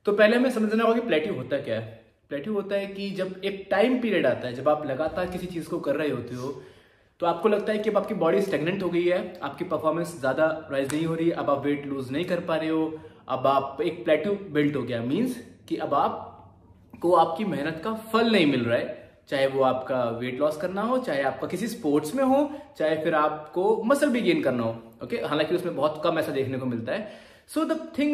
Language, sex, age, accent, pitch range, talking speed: Hindi, male, 20-39, native, 145-210 Hz, 240 wpm